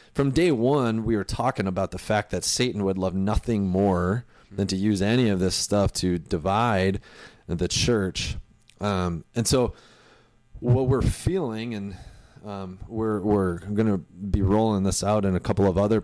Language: English